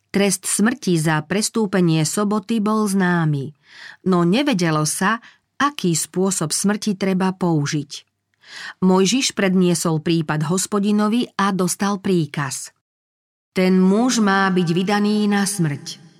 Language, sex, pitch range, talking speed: Slovak, female, 165-205 Hz, 105 wpm